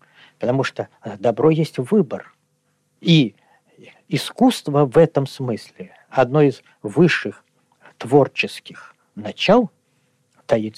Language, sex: Russian, male